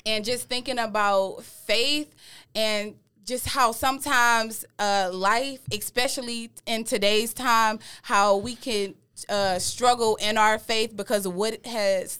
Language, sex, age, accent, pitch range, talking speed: English, female, 20-39, American, 200-245 Hz, 135 wpm